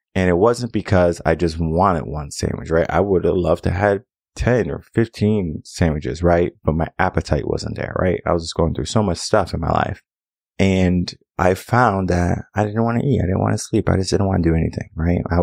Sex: male